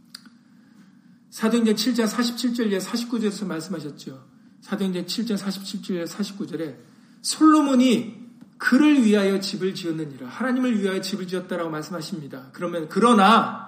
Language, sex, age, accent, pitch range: Korean, male, 50-69, native, 195-240 Hz